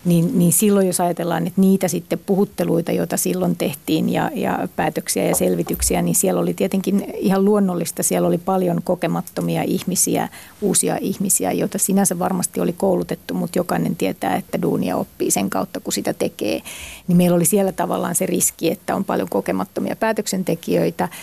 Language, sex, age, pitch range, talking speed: Finnish, female, 30-49, 175-195 Hz, 165 wpm